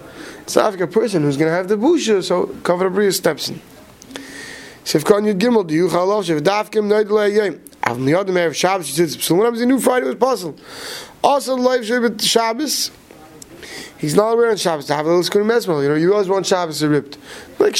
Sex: male